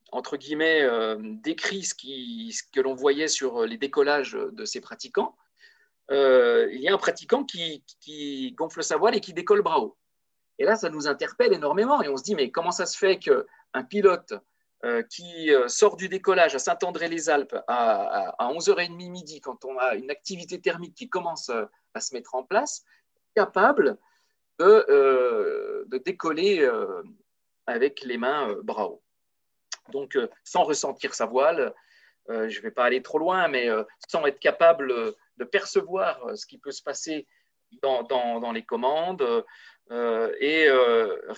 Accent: French